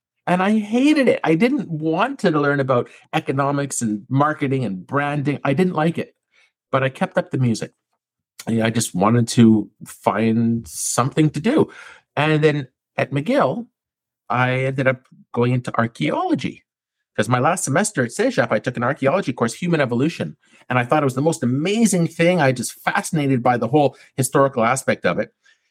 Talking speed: 175 wpm